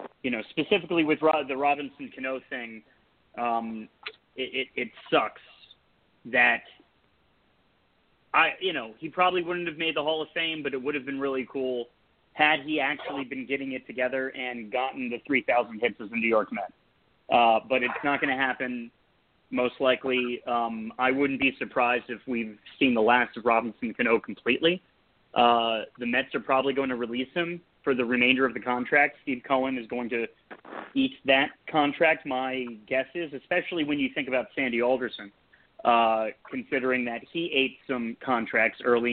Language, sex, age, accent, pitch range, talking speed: English, male, 30-49, American, 120-150 Hz, 175 wpm